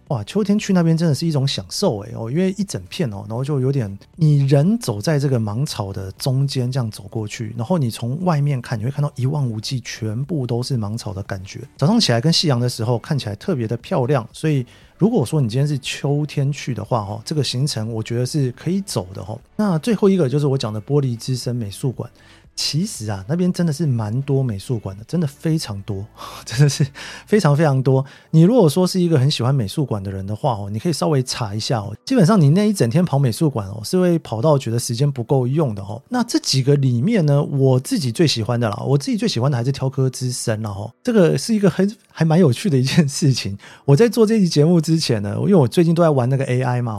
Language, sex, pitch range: Chinese, male, 120-160 Hz